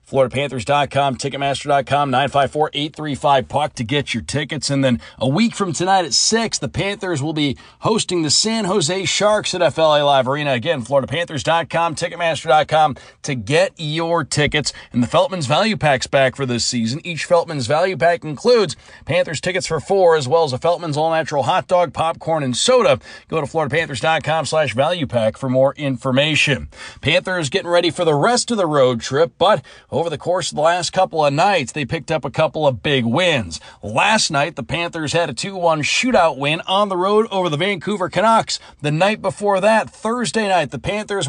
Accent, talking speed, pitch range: American, 180 wpm, 140-190 Hz